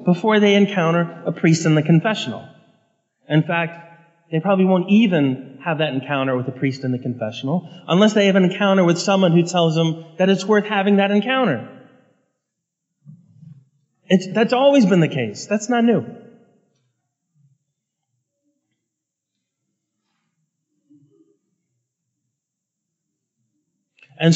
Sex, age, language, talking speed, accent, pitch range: male, 30-49, English, 120 wpm, American, 145-205 Hz